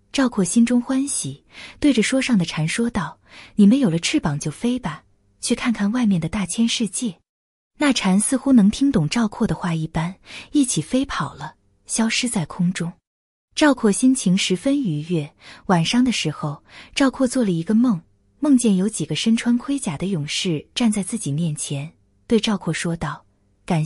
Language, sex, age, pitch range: Chinese, female, 20-39, 160-235 Hz